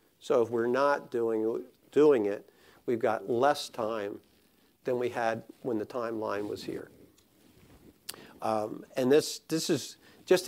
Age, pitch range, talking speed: 50-69, 125-170 Hz, 145 wpm